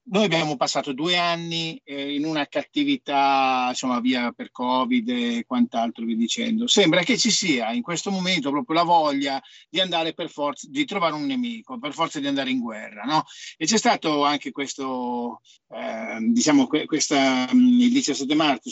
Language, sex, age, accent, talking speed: Italian, male, 50-69, native, 175 wpm